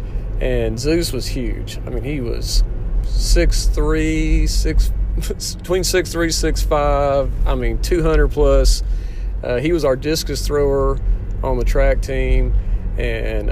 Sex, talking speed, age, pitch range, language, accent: male, 110 wpm, 40-59, 105-150 Hz, English, American